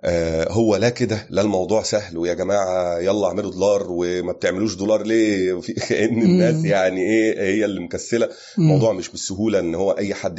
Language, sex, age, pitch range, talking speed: Arabic, male, 30-49, 90-120 Hz, 170 wpm